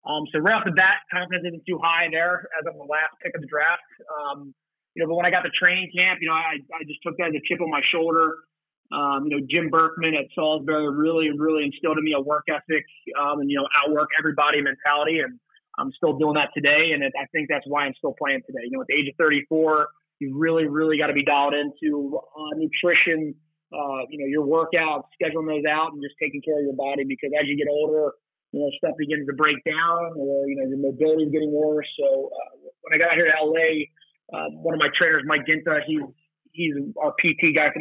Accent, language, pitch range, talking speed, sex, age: American, English, 145-165 Hz, 245 wpm, male, 30-49